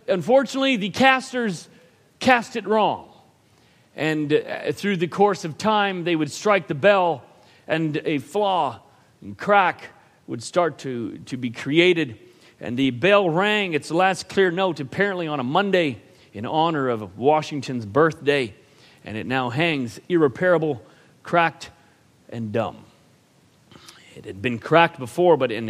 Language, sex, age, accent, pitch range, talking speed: English, male, 40-59, American, 120-190 Hz, 140 wpm